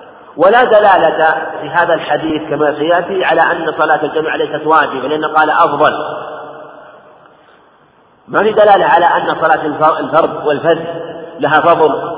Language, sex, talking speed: Arabic, male, 130 wpm